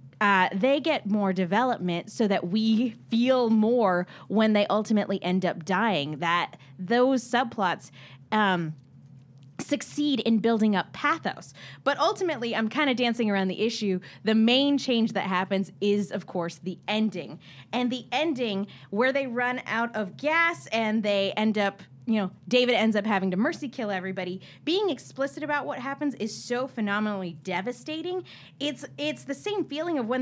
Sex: female